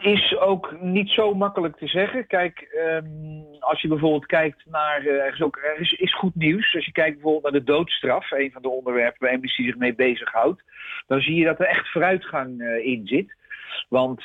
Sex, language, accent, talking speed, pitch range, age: male, Dutch, Dutch, 210 wpm, 130-160 Hz, 50-69